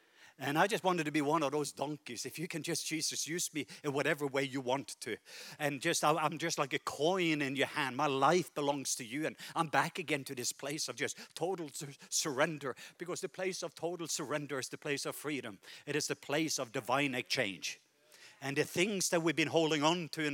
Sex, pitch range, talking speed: male, 145-180 Hz, 225 wpm